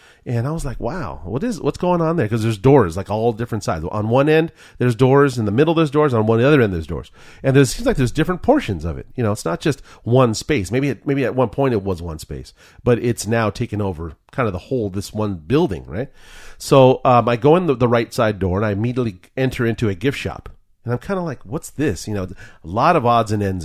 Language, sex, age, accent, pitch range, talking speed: English, male, 40-59, American, 105-135 Hz, 270 wpm